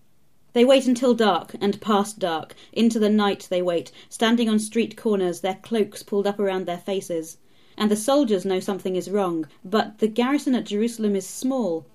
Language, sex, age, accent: English, female, 30-49, British